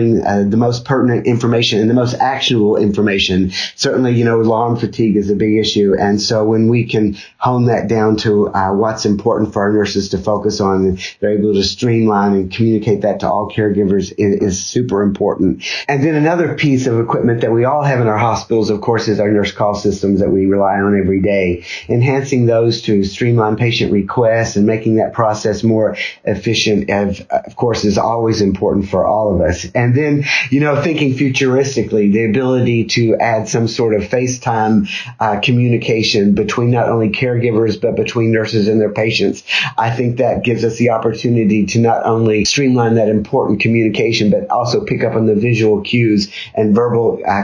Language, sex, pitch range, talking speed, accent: English, male, 105-120 Hz, 190 wpm, American